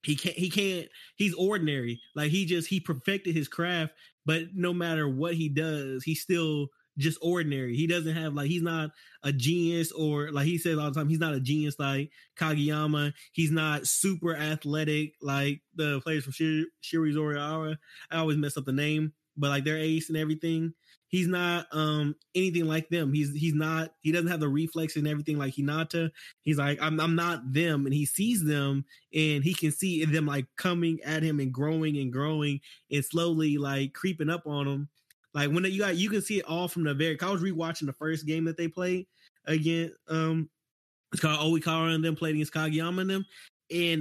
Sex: male